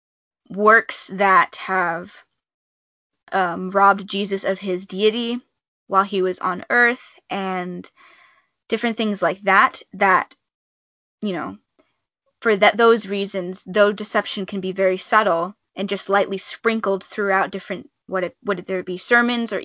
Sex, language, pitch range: female, English, 185-215 Hz